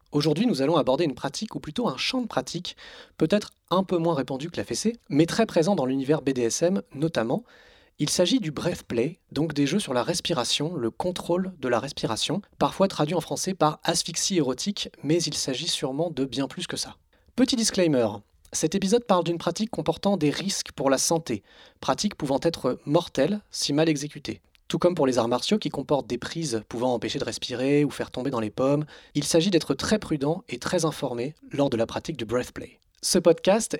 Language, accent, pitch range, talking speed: French, French, 130-175 Hz, 205 wpm